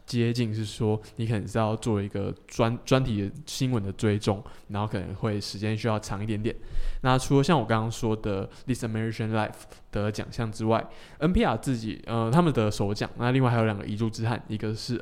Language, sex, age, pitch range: Chinese, male, 20-39, 105-120 Hz